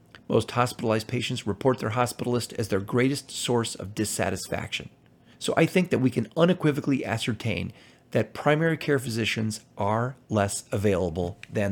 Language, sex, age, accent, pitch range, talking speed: English, male, 40-59, American, 105-130 Hz, 145 wpm